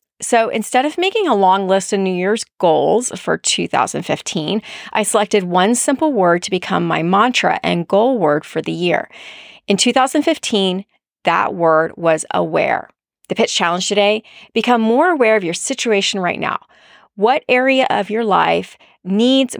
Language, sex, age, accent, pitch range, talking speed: English, female, 30-49, American, 185-245 Hz, 160 wpm